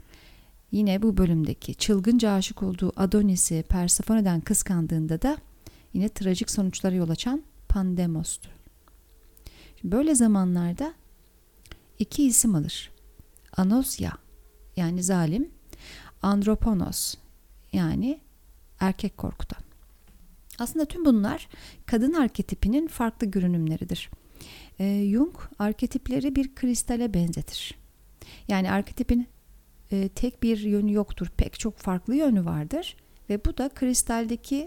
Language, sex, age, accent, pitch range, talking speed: Turkish, female, 40-59, native, 180-235 Hz, 100 wpm